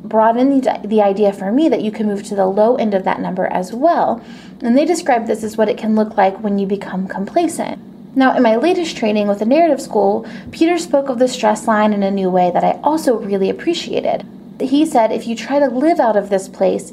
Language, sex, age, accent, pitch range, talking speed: English, female, 20-39, American, 205-260 Hz, 240 wpm